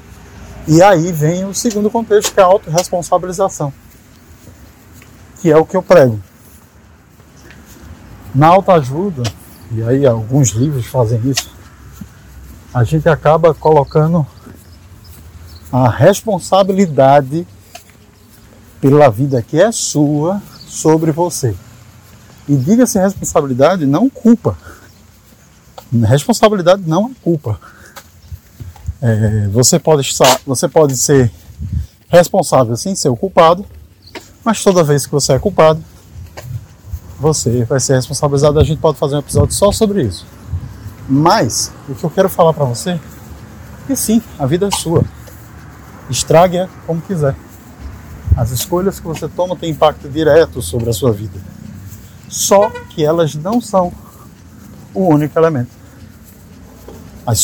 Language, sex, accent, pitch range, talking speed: Portuguese, male, Brazilian, 105-175 Hz, 120 wpm